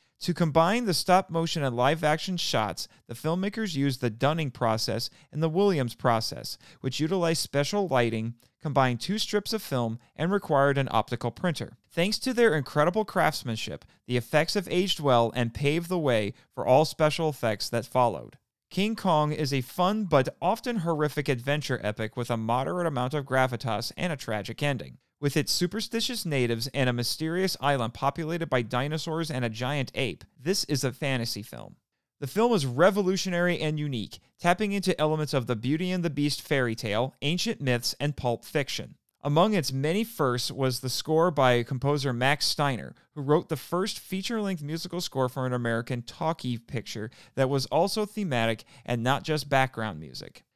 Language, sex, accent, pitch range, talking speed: English, male, American, 125-170 Hz, 170 wpm